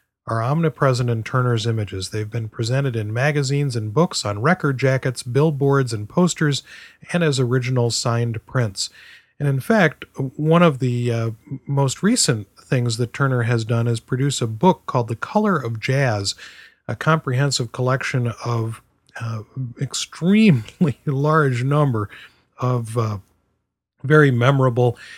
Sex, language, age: male, English, 40-59